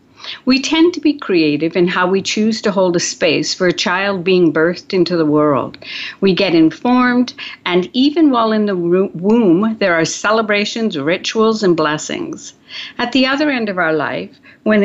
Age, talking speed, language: 60-79, 180 wpm, English